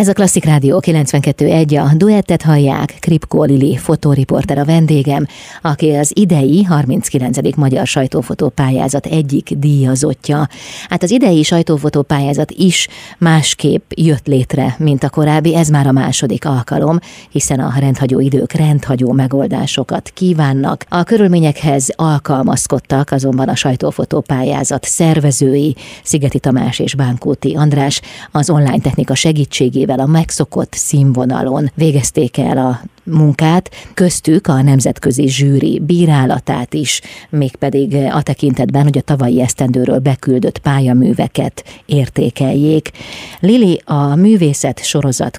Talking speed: 115 wpm